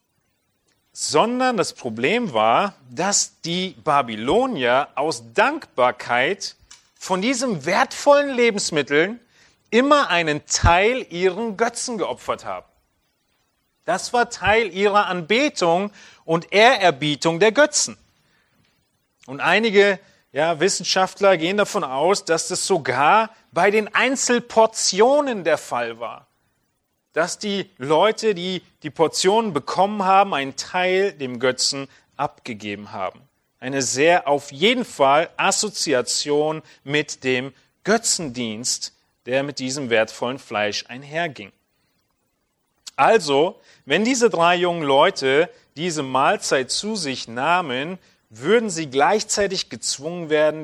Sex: male